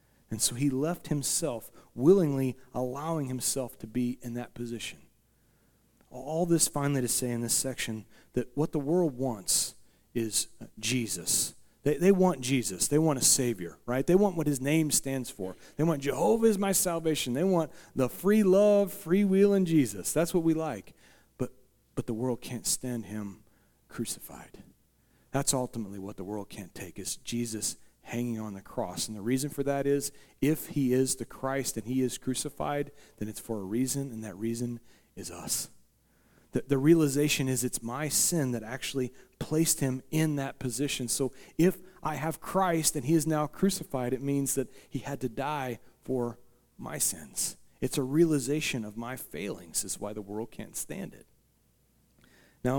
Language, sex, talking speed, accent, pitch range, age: English, male, 180 wpm, American, 120-155 Hz, 40-59